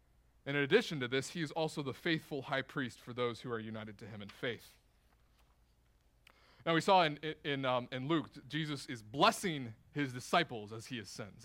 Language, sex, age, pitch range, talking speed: English, male, 30-49, 130-185 Hz, 205 wpm